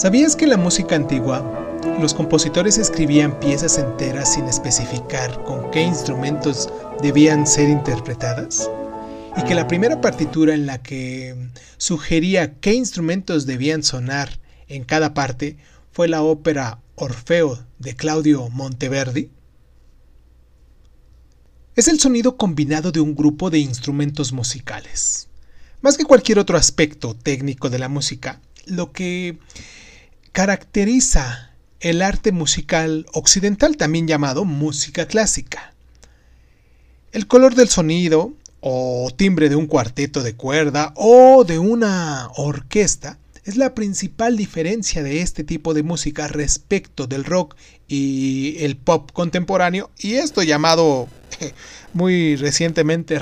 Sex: male